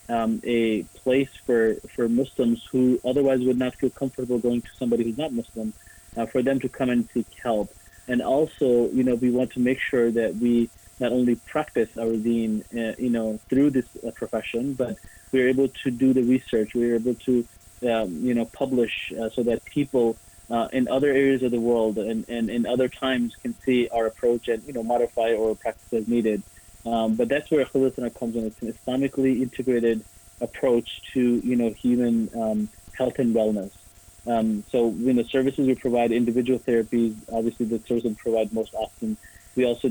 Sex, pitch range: male, 110-125 Hz